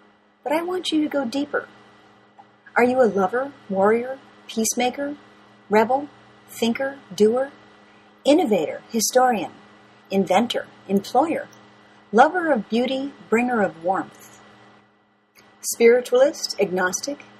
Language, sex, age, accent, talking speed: English, female, 40-59, American, 95 wpm